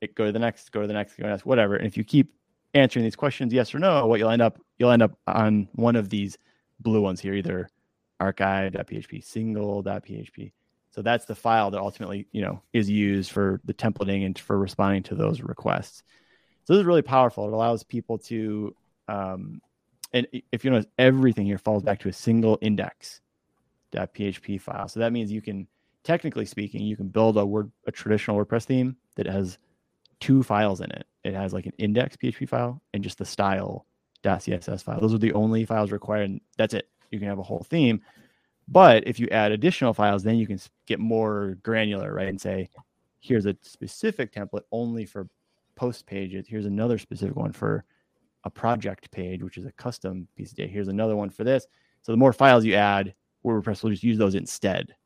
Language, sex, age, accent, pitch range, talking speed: English, male, 20-39, American, 100-115 Hz, 205 wpm